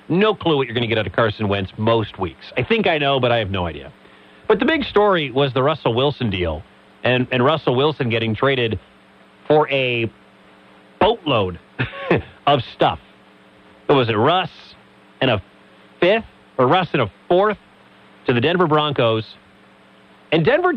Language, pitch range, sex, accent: English, 120-180 Hz, male, American